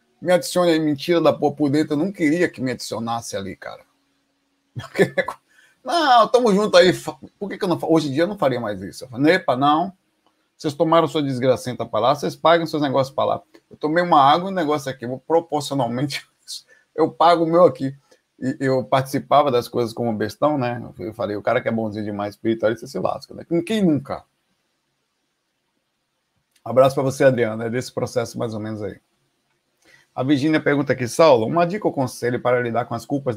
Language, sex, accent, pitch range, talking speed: Portuguese, male, Brazilian, 120-155 Hz, 210 wpm